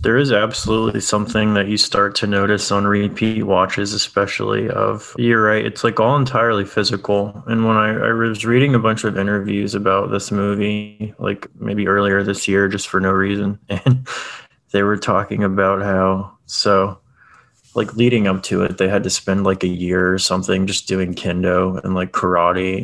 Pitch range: 95-105 Hz